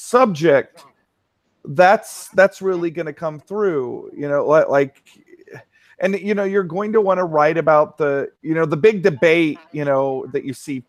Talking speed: 175 wpm